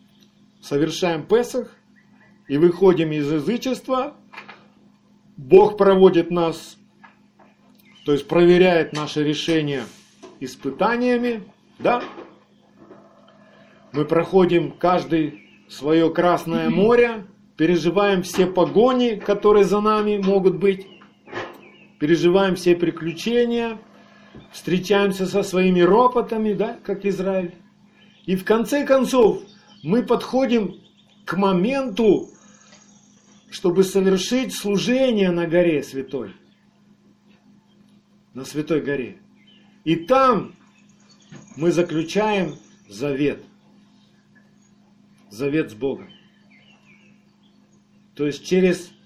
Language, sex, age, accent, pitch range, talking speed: Russian, male, 40-59, native, 170-215 Hz, 85 wpm